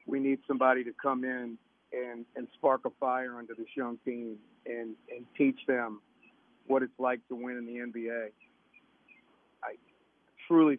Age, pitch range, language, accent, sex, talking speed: 50-69, 115-130 Hz, English, American, male, 160 wpm